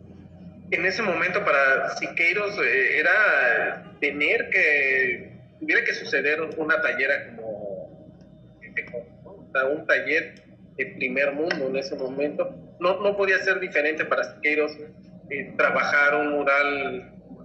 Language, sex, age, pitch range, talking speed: Spanish, male, 40-59, 145-190 Hz, 115 wpm